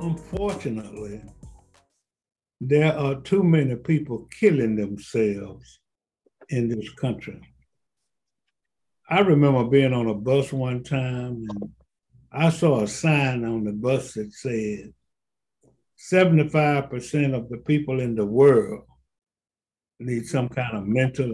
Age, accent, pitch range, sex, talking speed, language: 60-79, American, 115-155 Hz, male, 115 wpm, English